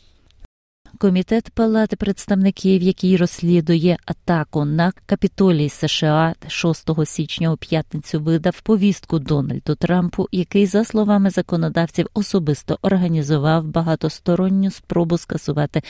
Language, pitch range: Ukrainian, 150-190 Hz